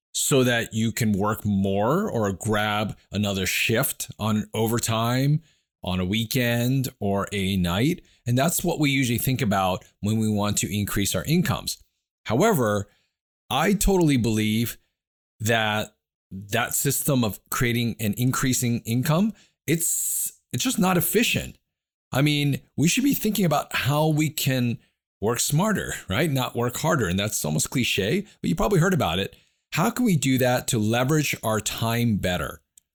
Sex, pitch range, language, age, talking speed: male, 100-140 Hz, English, 40-59, 155 wpm